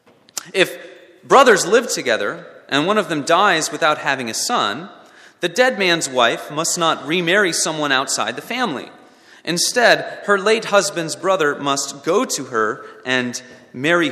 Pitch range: 135-180 Hz